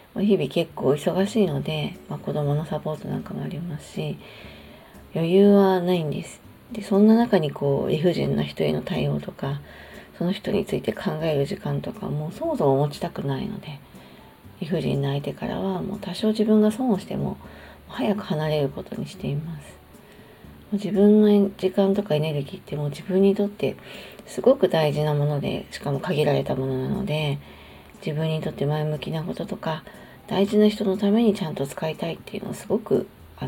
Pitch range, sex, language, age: 145-200 Hz, female, Japanese, 40-59